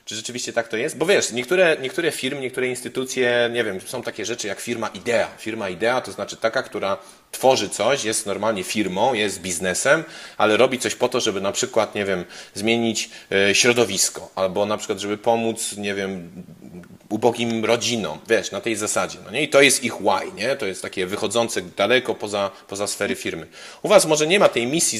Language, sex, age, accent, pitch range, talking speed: Polish, male, 30-49, native, 110-130 Hz, 195 wpm